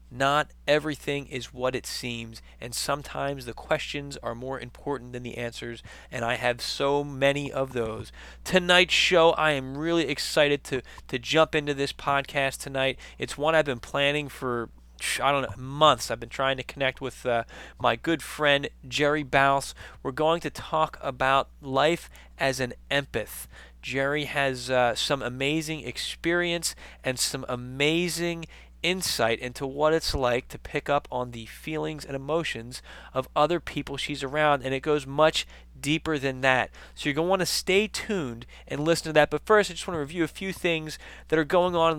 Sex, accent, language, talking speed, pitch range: male, American, English, 185 wpm, 120-150 Hz